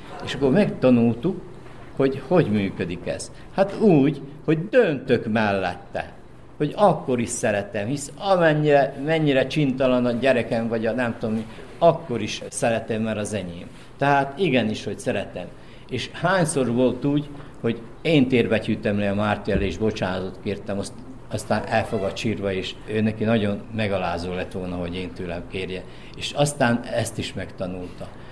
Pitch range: 105-135 Hz